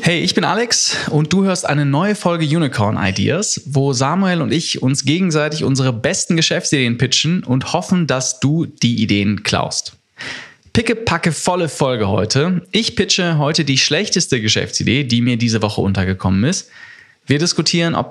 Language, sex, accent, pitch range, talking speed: German, male, German, 125-170 Hz, 160 wpm